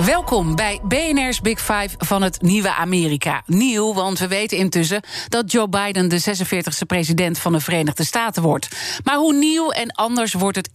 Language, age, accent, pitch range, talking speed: Dutch, 40-59, Dutch, 180-235 Hz, 180 wpm